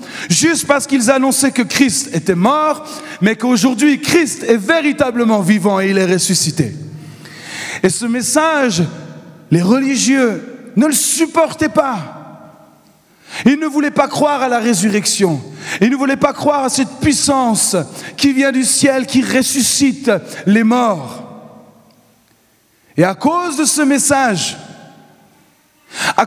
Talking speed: 135 wpm